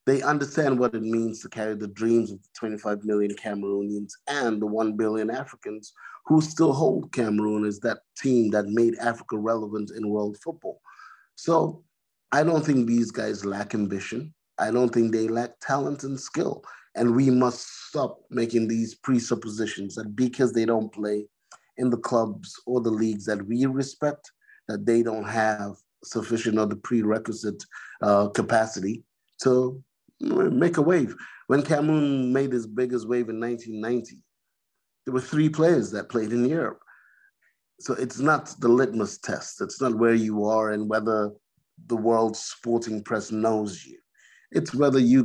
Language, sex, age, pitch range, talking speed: English, male, 30-49, 110-130 Hz, 160 wpm